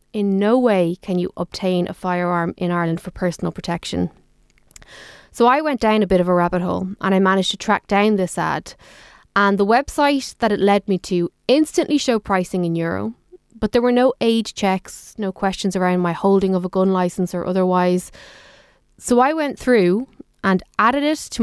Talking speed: 195 wpm